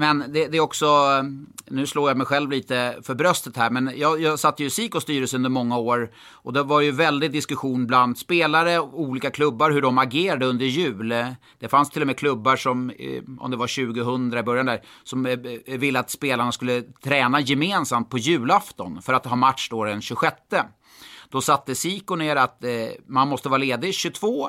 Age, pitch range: 30-49, 120-140 Hz